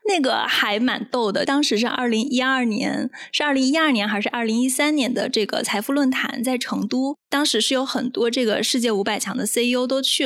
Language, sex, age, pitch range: Chinese, female, 20-39, 230-275 Hz